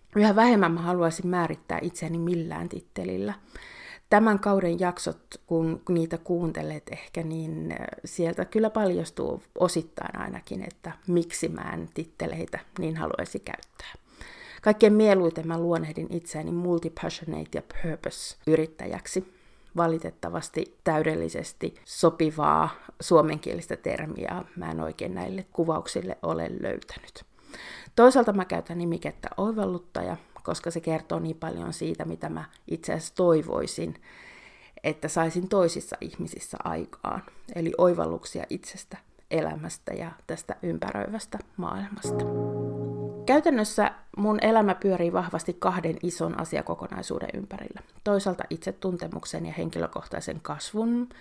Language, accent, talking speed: Finnish, native, 110 wpm